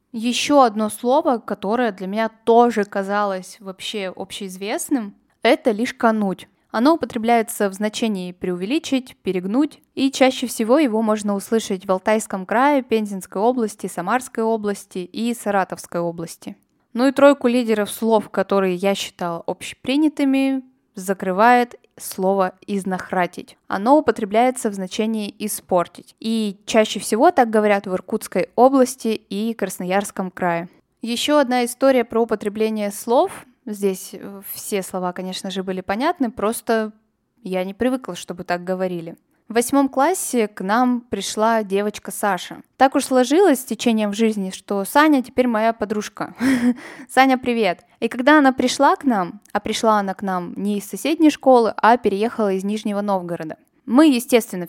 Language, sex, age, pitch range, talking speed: Russian, female, 10-29, 195-250 Hz, 140 wpm